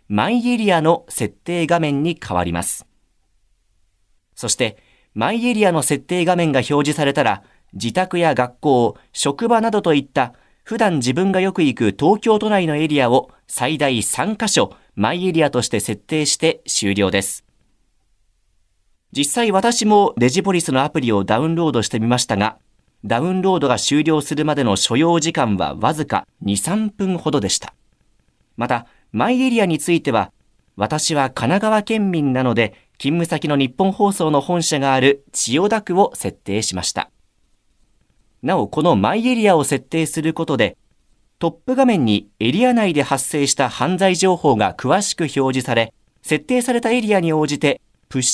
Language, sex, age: Japanese, male, 40-59